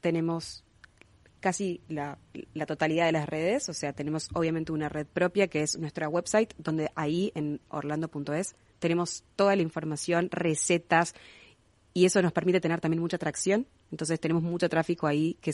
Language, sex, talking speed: Spanish, female, 160 wpm